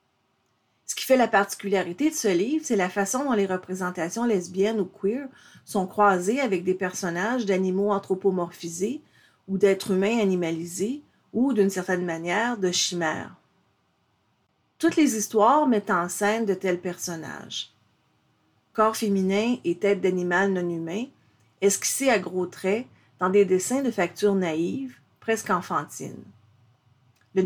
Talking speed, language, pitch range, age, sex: 140 wpm, French, 180-225 Hz, 40-59, female